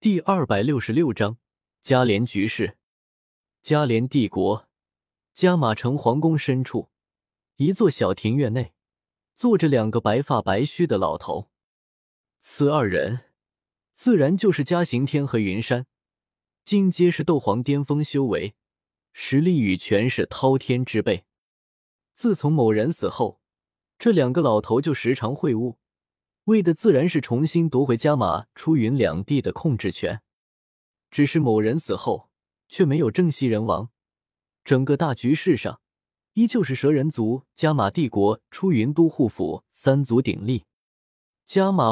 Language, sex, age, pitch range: Chinese, male, 20-39, 110-155 Hz